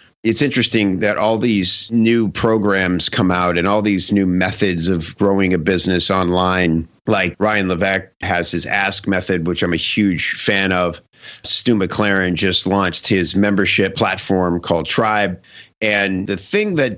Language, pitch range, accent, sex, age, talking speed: English, 90-110 Hz, American, male, 50-69, 160 wpm